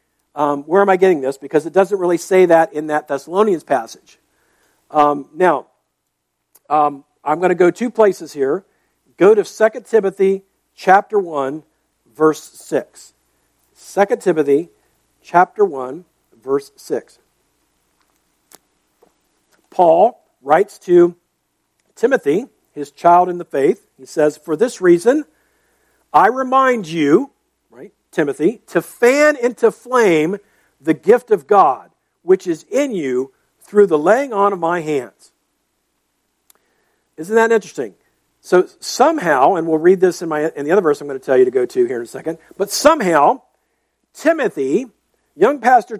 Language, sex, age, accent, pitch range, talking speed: English, male, 50-69, American, 160-240 Hz, 140 wpm